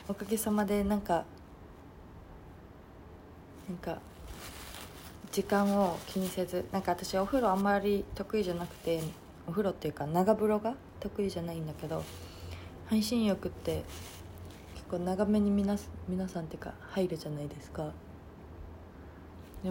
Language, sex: Japanese, female